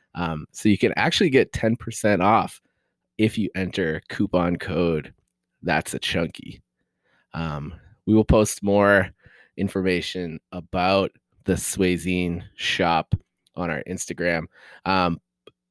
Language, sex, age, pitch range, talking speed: English, male, 20-39, 85-105 Hz, 115 wpm